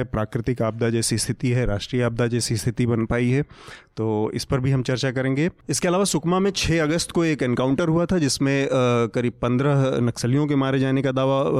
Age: 30-49